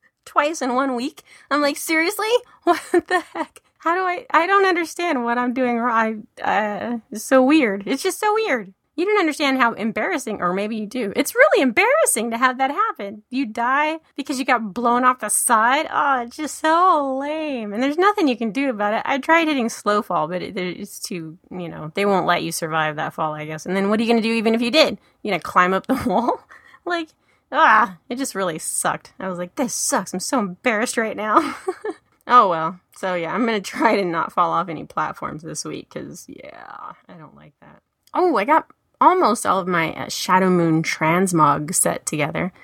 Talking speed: 215 wpm